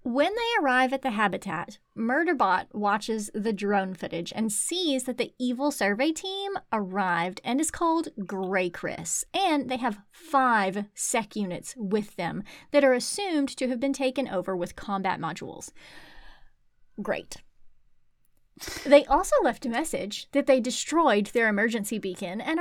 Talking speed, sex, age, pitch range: 150 wpm, female, 30-49, 205-295 Hz